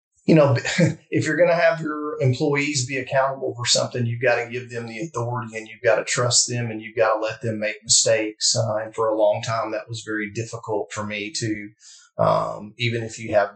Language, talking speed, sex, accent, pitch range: English, 230 wpm, male, American, 105-120 Hz